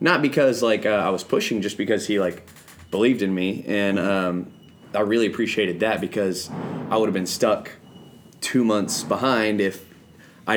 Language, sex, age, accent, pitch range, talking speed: English, male, 20-39, American, 95-115 Hz, 175 wpm